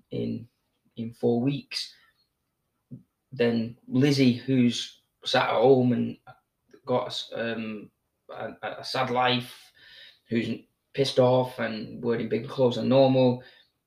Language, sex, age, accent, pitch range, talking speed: English, male, 20-39, British, 120-135 Hz, 115 wpm